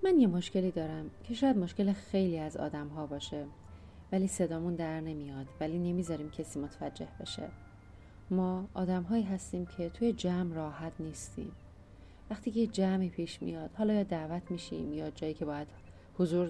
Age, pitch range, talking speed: 30-49, 160-215 Hz, 160 wpm